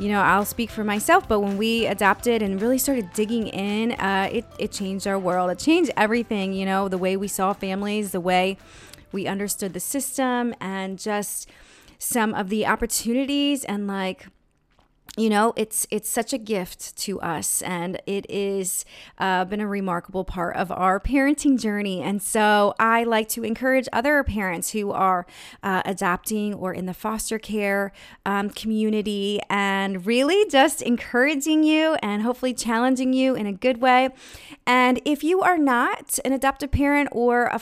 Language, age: English, 30-49